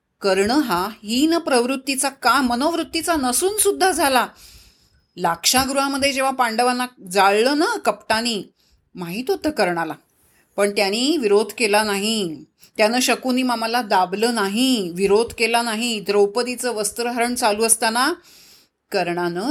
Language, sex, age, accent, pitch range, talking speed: Marathi, female, 30-49, native, 190-270 Hz, 115 wpm